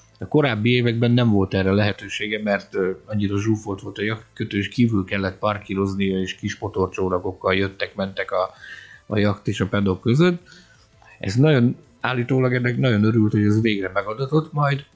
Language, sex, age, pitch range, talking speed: Hungarian, male, 50-69, 105-140 Hz, 160 wpm